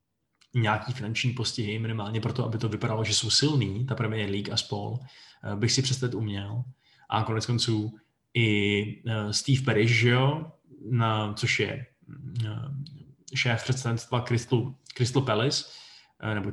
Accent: native